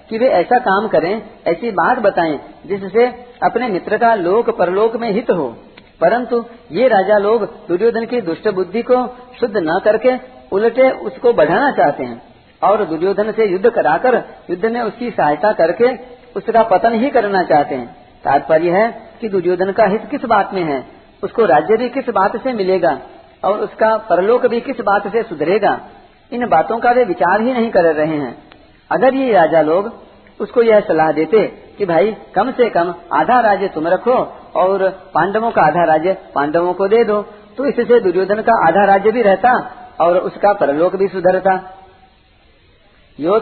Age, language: 50-69, Hindi